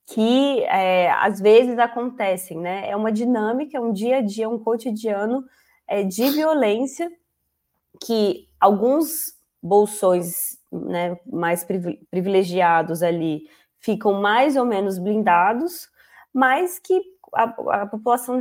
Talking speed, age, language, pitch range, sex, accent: 115 wpm, 20-39, Portuguese, 185-245 Hz, female, Brazilian